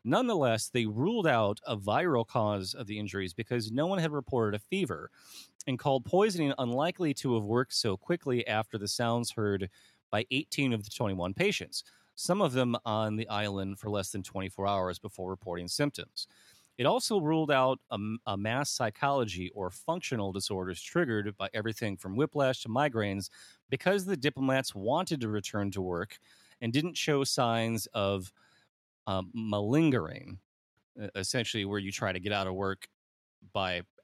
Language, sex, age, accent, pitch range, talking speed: English, male, 30-49, American, 100-135 Hz, 165 wpm